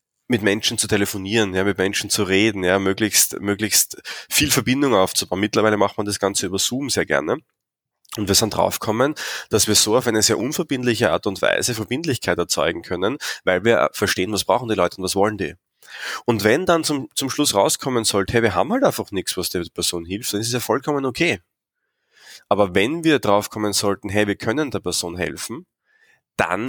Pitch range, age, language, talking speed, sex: 100-120 Hz, 20-39, German, 200 wpm, male